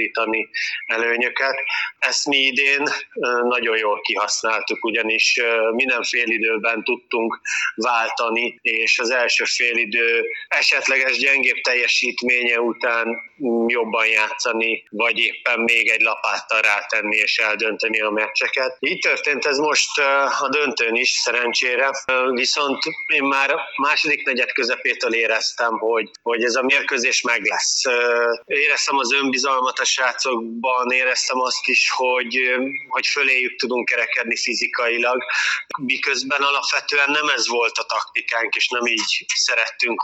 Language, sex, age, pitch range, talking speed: Hungarian, male, 30-49, 120-145 Hz, 120 wpm